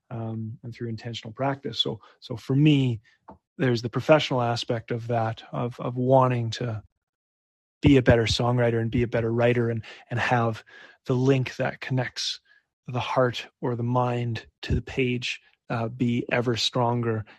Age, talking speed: 30-49, 160 wpm